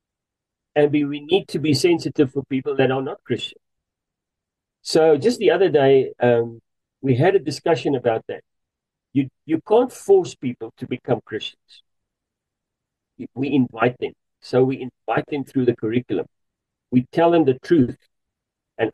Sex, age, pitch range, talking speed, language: male, 50-69, 125-160 Hz, 155 wpm, English